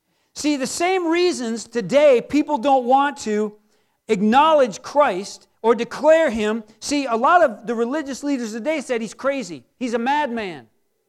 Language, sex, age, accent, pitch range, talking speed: English, male, 40-59, American, 240-320 Hz, 150 wpm